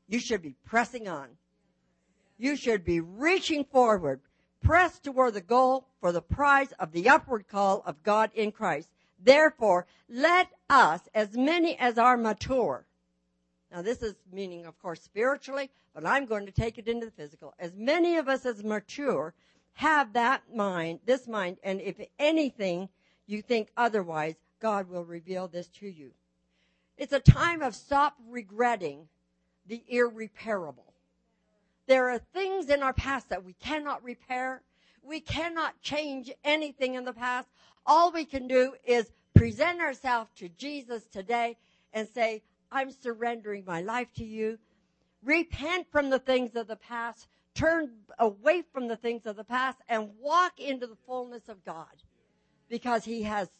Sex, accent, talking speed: female, American, 155 wpm